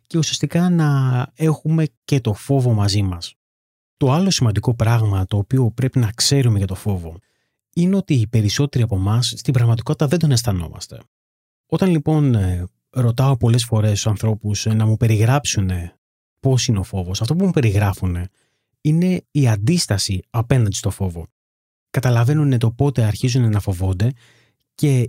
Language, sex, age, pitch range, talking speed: Greek, male, 30-49, 100-140 Hz, 150 wpm